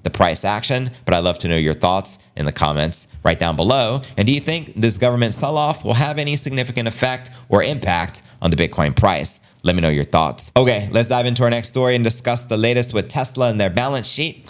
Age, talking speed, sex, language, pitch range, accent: 30-49, 230 wpm, male, English, 95-145 Hz, American